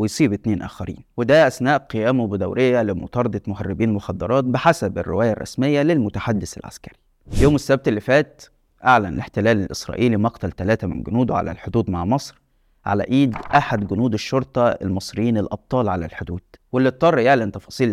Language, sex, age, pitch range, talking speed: Arabic, male, 20-39, 100-130 Hz, 145 wpm